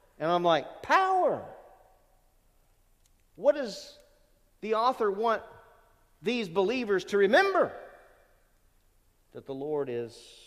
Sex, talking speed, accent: male, 95 wpm, American